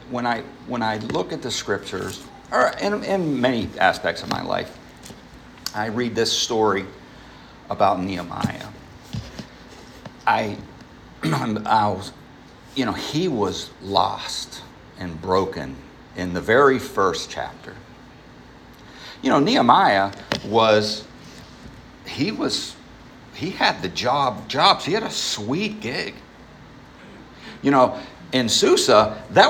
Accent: American